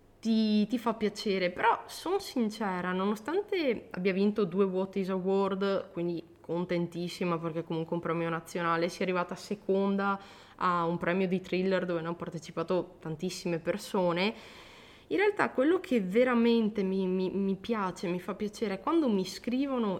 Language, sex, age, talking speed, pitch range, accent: Italian, female, 20-39, 155 wpm, 175-220 Hz, native